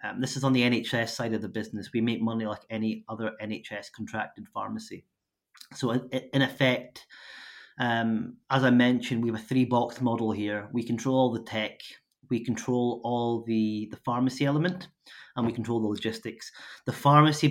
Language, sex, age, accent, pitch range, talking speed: English, male, 30-49, British, 110-125 Hz, 180 wpm